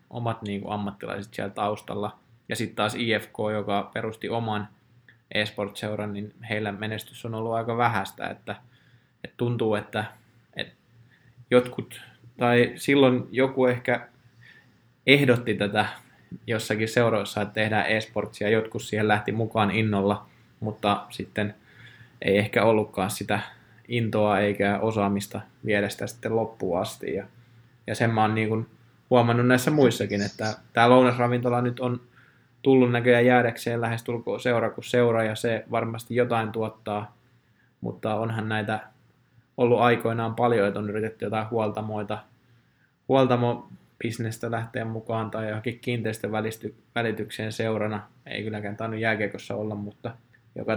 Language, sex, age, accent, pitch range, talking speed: Finnish, male, 20-39, native, 105-120 Hz, 125 wpm